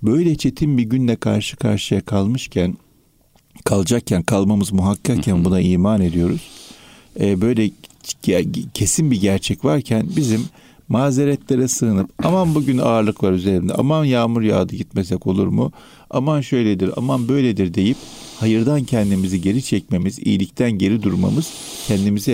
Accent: native